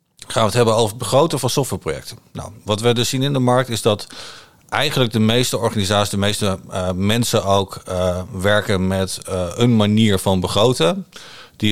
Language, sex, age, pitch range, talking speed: Dutch, male, 50-69, 95-115 Hz, 190 wpm